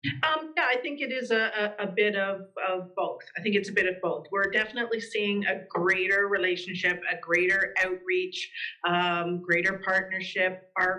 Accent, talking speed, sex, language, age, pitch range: American, 180 wpm, female, English, 40-59, 185-235 Hz